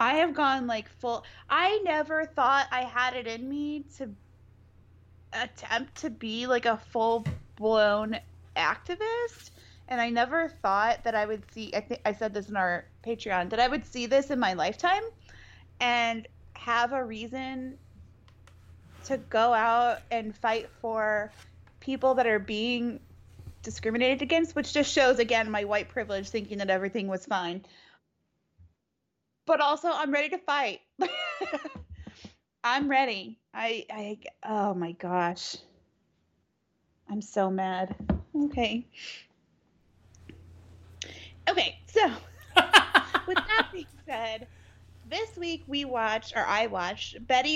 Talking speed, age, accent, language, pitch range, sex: 135 wpm, 20-39, American, English, 190-270 Hz, female